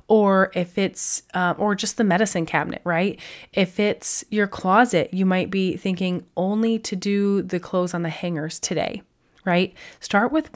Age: 20-39